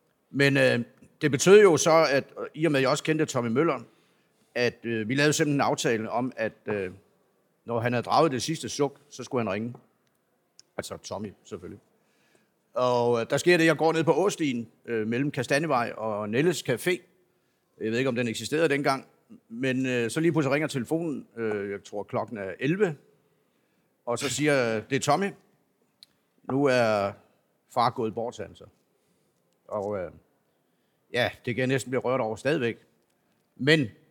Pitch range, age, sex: 120-150 Hz, 50-69, male